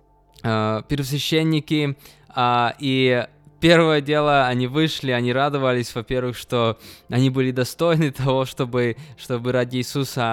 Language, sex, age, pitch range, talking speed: Russian, male, 20-39, 115-145 Hz, 105 wpm